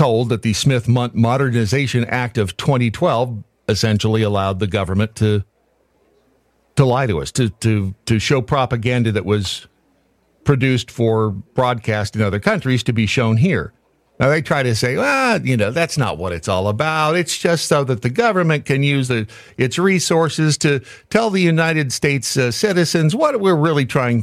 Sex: male